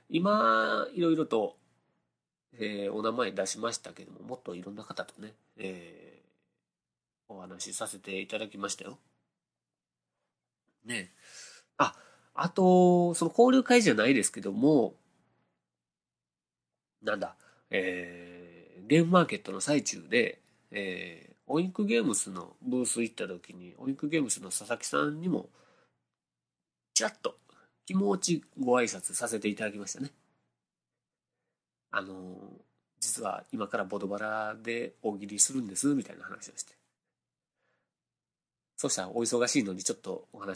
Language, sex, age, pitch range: Japanese, male, 40-59, 90-140 Hz